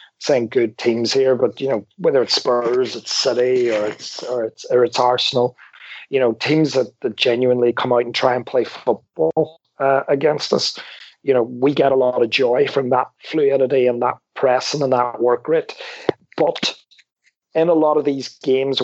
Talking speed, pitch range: 190 wpm, 125-150 Hz